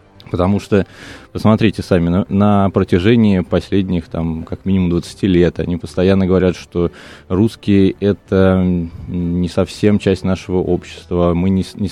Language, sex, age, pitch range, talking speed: Russian, male, 20-39, 85-100 Hz, 125 wpm